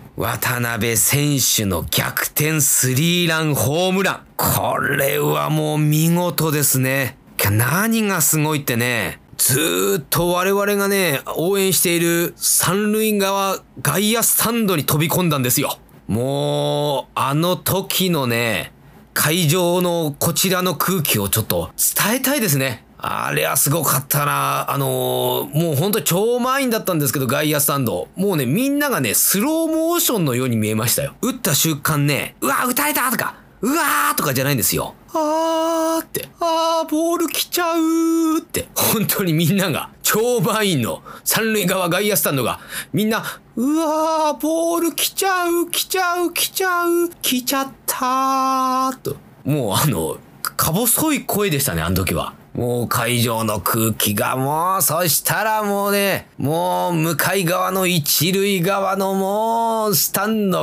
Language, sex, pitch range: Japanese, male, 135-215 Hz